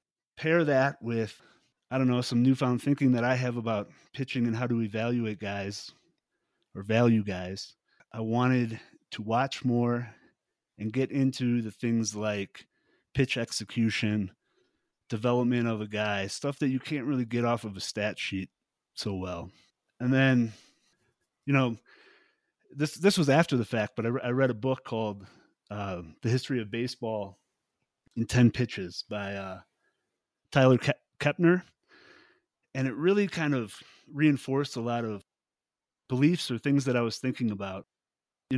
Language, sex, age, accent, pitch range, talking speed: English, male, 30-49, American, 110-135 Hz, 155 wpm